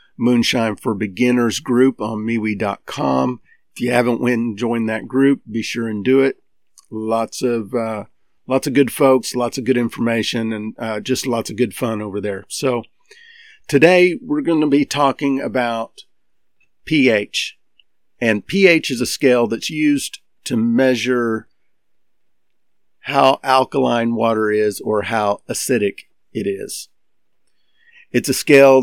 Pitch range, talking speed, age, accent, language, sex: 115-140 Hz, 145 wpm, 50-69, American, English, male